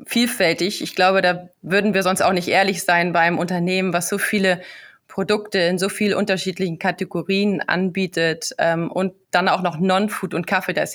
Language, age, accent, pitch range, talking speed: German, 20-39, German, 175-200 Hz, 175 wpm